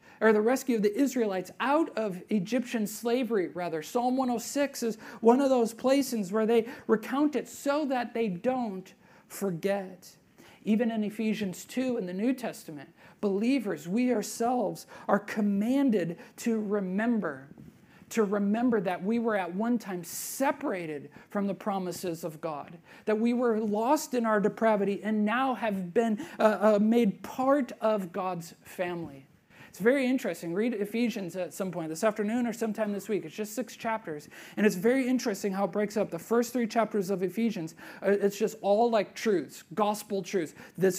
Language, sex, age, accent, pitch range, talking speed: English, male, 40-59, American, 190-235 Hz, 165 wpm